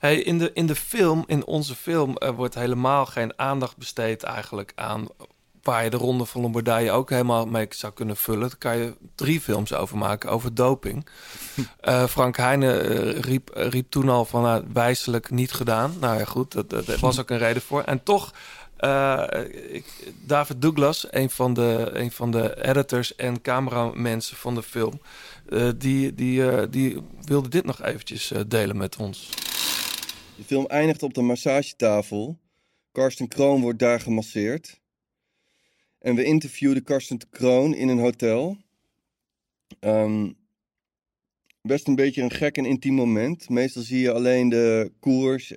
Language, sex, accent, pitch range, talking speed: Dutch, male, Dutch, 115-135 Hz, 165 wpm